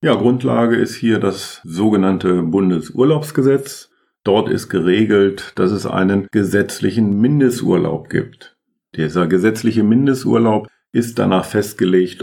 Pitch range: 95-125 Hz